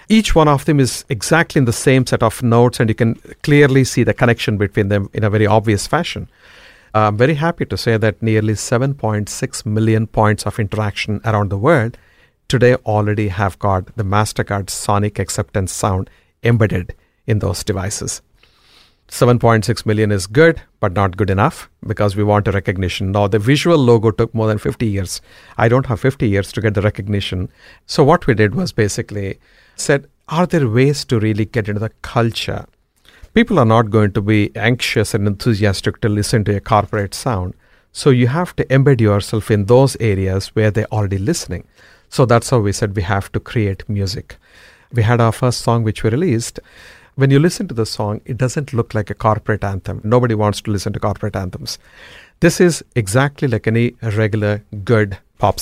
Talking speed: 190 wpm